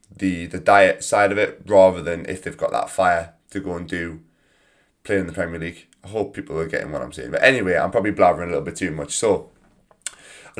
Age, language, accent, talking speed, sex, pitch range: 20-39, English, British, 240 wpm, male, 90-100 Hz